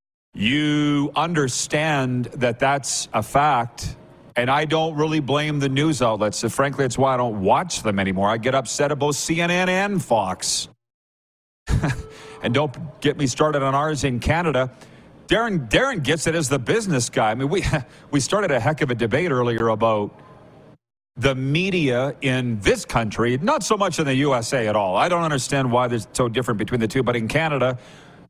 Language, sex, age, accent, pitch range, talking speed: English, male, 40-59, American, 120-150 Hz, 180 wpm